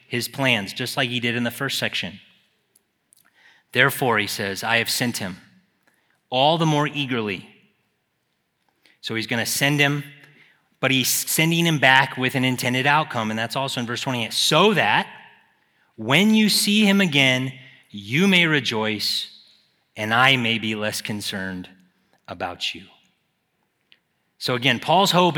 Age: 30-49